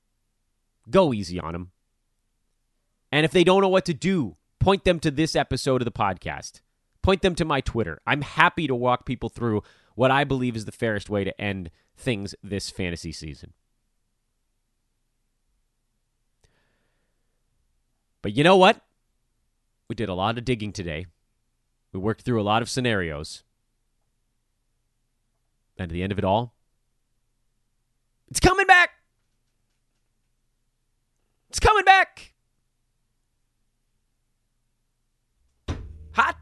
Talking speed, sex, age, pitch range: 125 wpm, male, 30-49, 105-135 Hz